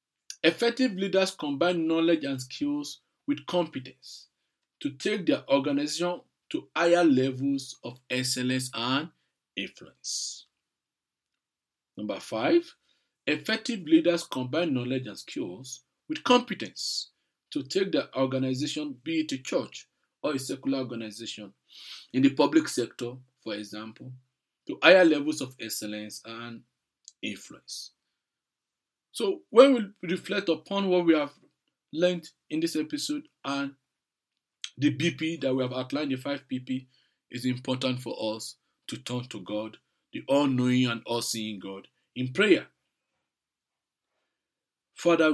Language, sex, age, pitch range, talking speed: English, male, 50-69, 125-170 Hz, 125 wpm